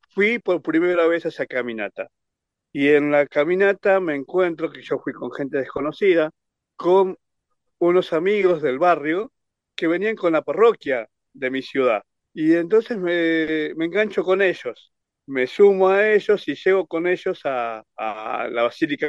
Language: Spanish